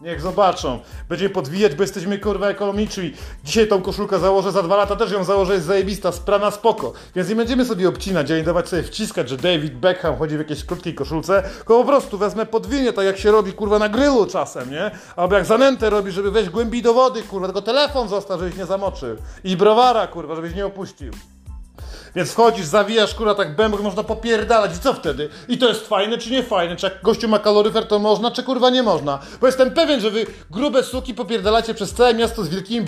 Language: Polish